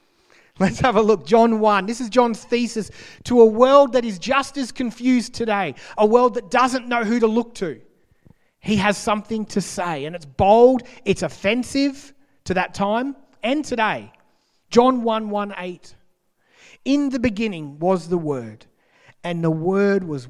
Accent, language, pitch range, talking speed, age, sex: Australian, English, 165-235 Hz, 165 wpm, 40-59, male